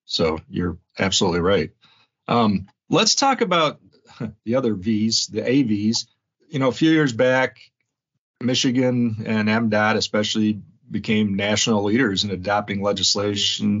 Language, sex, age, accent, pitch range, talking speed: English, male, 40-59, American, 100-120 Hz, 125 wpm